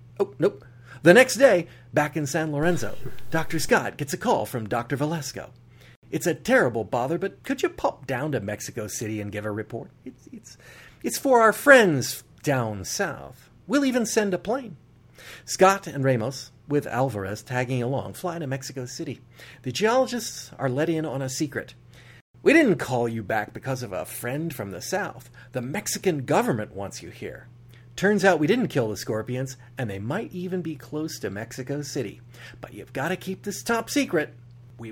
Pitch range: 120-175 Hz